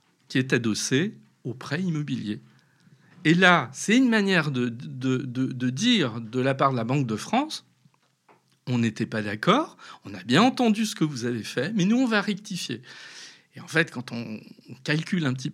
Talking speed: 195 wpm